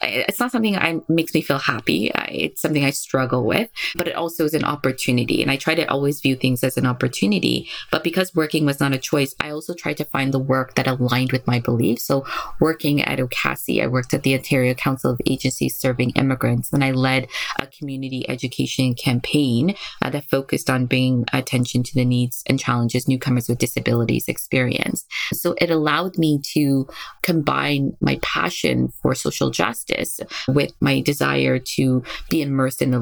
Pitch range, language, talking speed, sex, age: 125-155 Hz, English, 190 wpm, female, 20-39